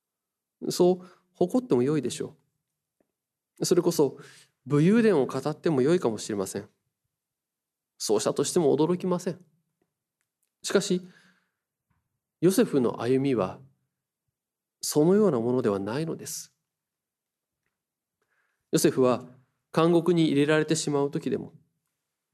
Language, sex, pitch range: Japanese, male, 130-170 Hz